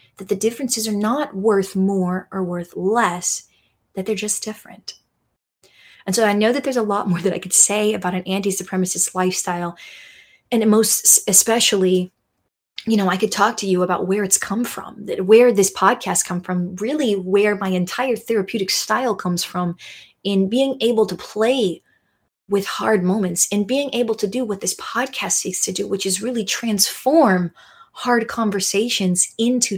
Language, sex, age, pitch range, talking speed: English, female, 20-39, 185-225 Hz, 175 wpm